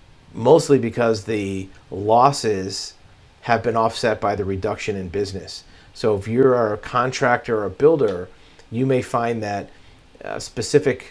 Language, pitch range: English, 95-120 Hz